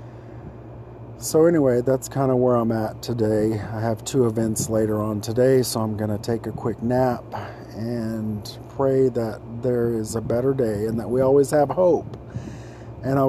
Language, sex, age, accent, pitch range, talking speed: English, male, 40-59, American, 115-125 Hz, 180 wpm